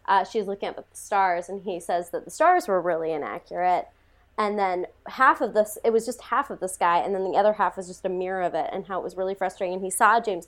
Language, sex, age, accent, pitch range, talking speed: English, female, 20-39, American, 180-225 Hz, 275 wpm